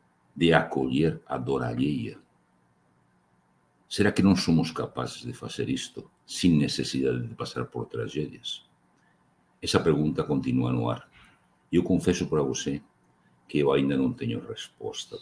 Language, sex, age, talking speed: Portuguese, male, 60-79, 135 wpm